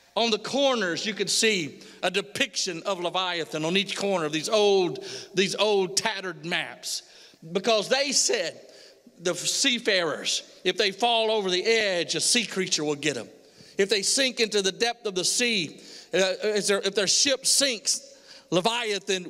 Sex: male